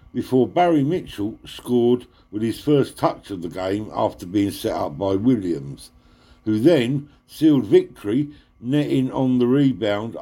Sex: male